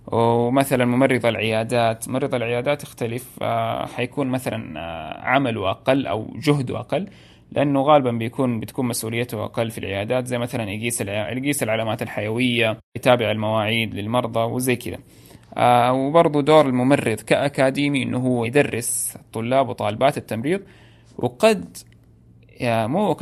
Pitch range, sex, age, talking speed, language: 115-135 Hz, male, 20-39, 115 wpm, Arabic